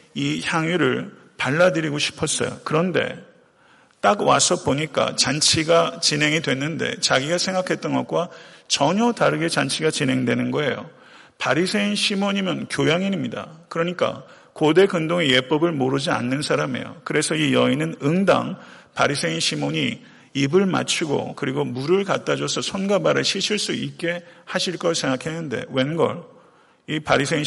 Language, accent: Korean, native